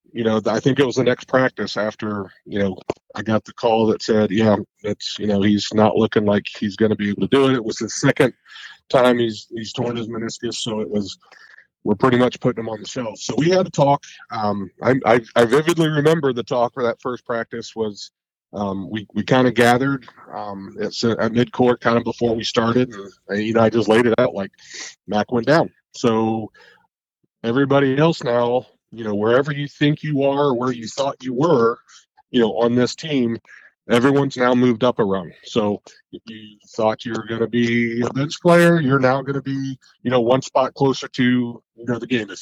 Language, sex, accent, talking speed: English, male, American, 220 wpm